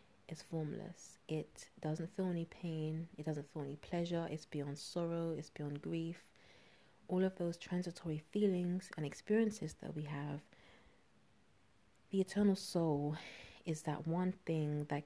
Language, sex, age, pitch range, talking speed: English, female, 30-49, 145-180 Hz, 145 wpm